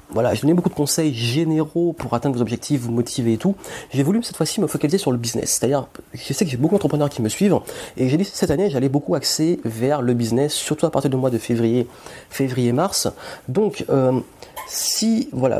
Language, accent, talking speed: French, French, 215 wpm